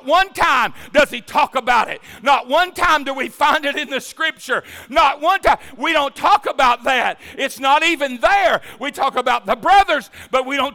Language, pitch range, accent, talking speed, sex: English, 275-340 Hz, American, 205 wpm, male